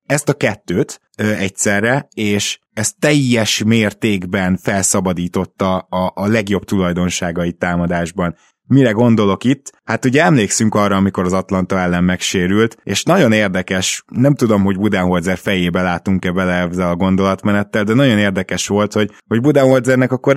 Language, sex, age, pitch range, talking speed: Hungarian, male, 20-39, 95-115 Hz, 140 wpm